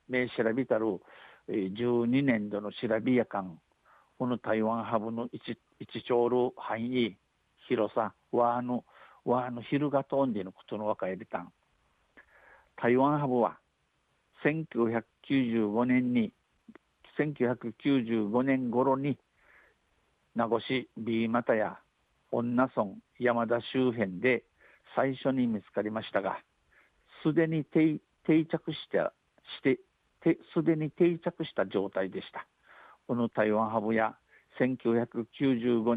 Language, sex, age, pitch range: Japanese, male, 60-79, 110-135 Hz